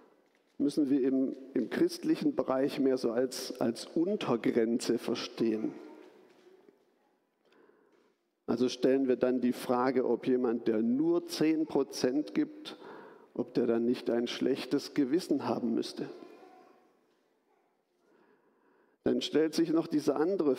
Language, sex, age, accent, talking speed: German, male, 50-69, German, 115 wpm